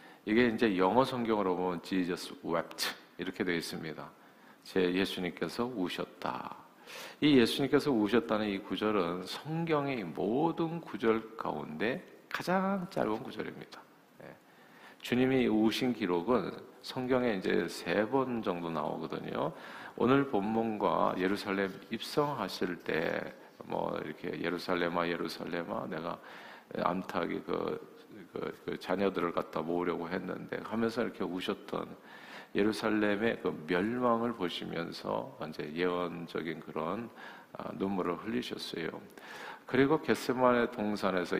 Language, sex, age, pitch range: Korean, male, 50-69, 90-125 Hz